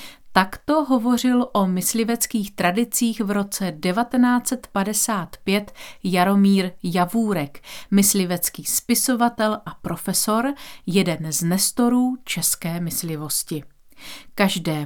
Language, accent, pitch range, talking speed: Czech, native, 170-225 Hz, 80 wpm